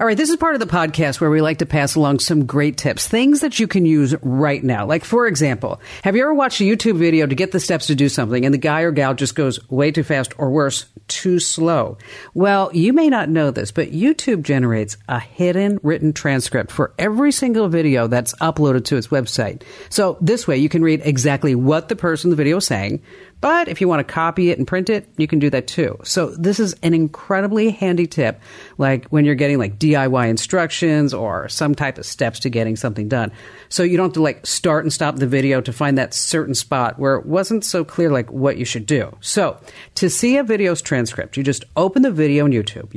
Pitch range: 135-175 Hz